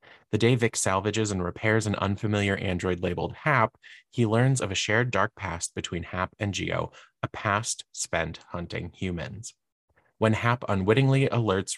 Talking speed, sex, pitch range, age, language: 160 wpm, male, 95-110 Hz, 20-39, English